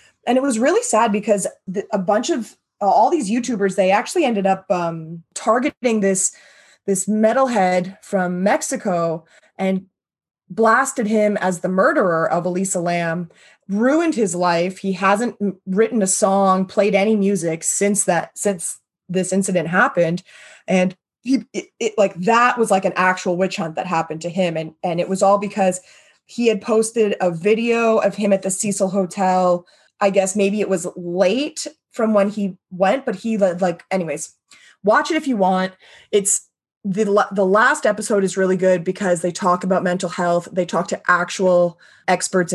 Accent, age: American, 20-39